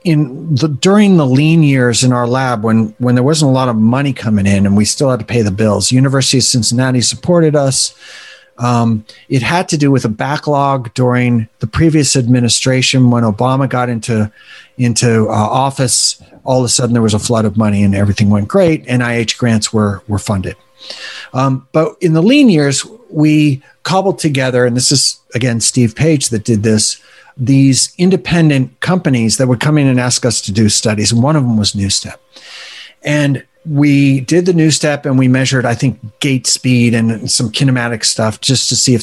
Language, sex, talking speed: English, male, 195 wpm